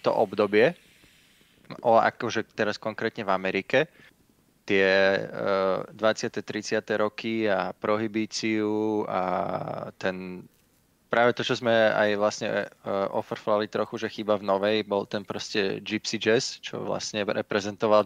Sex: male